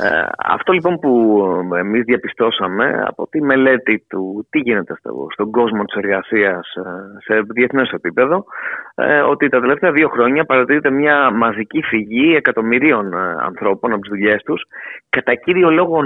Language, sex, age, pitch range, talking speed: Greek, male, 30-49, 115-170 Hz, 140 wpm